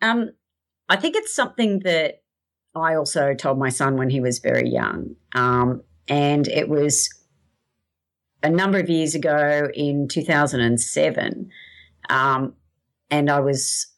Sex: female